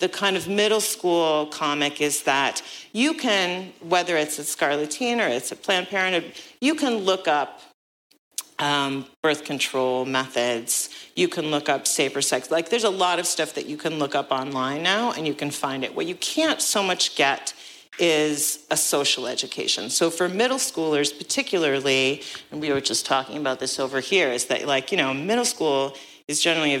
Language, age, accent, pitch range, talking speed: English, 40-59, American, 140-190 Hz, 195 wpm